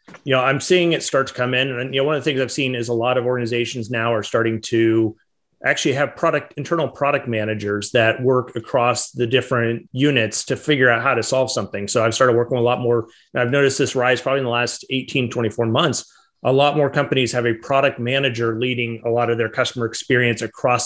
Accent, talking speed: American, 230 wpm